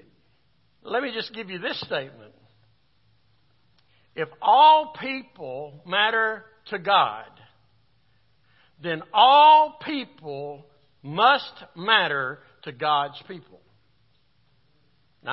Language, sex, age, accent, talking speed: English, male, 60-79, American, 85 wpm